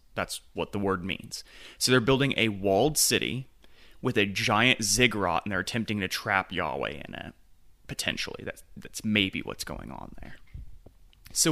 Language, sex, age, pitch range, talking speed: English, male, 30-49, 95-125 Hz, 165 wpm